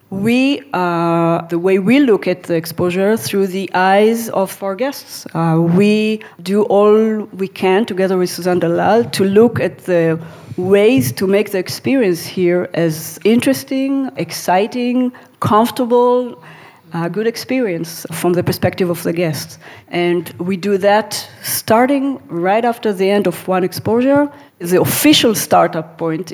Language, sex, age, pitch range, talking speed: Hebrew, female, 40-59, 175-225 Hz, 150 wpm